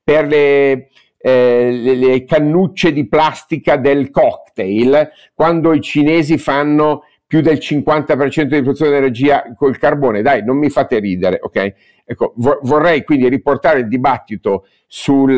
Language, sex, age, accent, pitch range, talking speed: Italian, male, 50-69, native, 120-150 Hz, 145 wpm